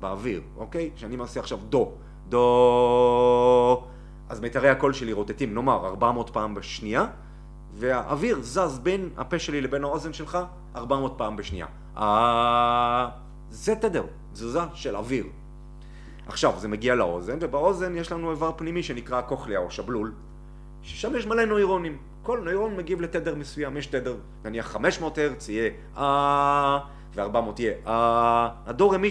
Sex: male